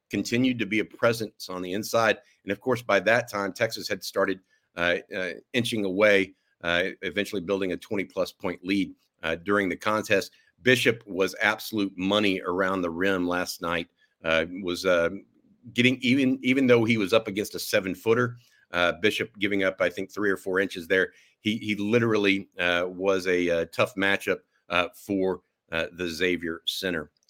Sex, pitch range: male, 95-120 Hz